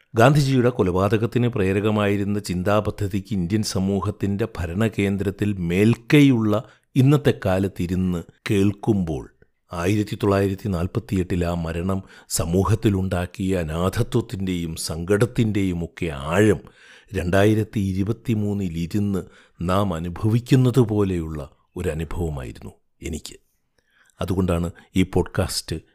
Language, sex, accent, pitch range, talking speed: Malayalam, male, native, 90-110 Hz, 75 wpm